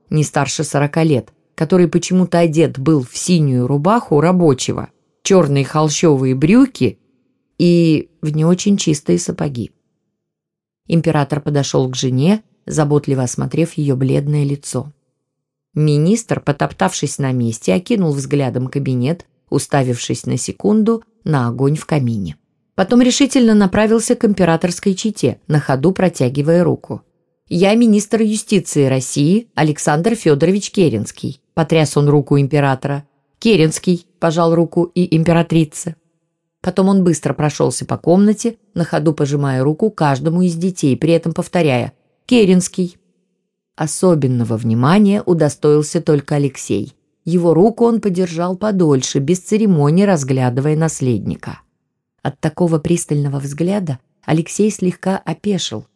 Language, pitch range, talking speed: Russian, 140-185 Hz, 115 wpm